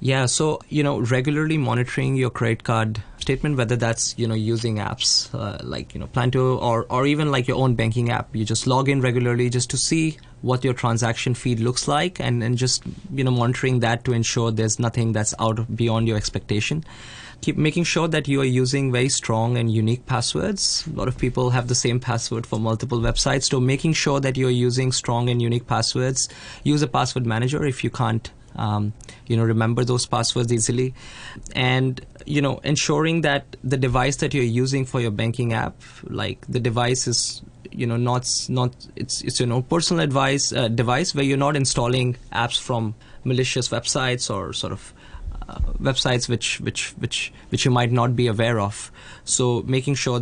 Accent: Indian